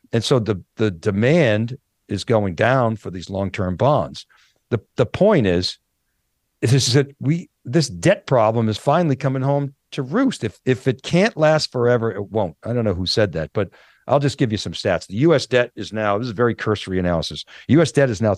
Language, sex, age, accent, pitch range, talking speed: English, male, 50-69, American, 110-145 Hz, 215 wpm